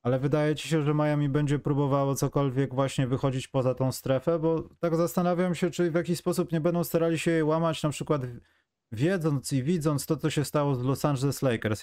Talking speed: 210 wpm